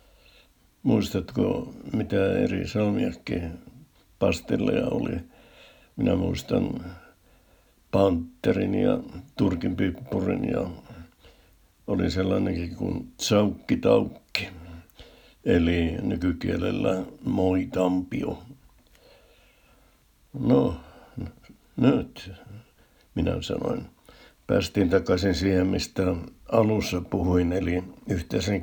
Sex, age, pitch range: male, 60-79, 85-105 Hz